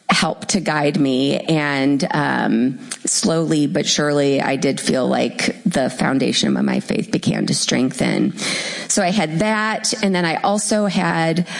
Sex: female